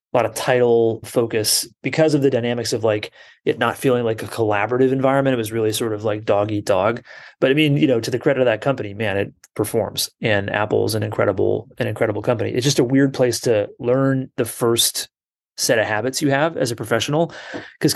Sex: male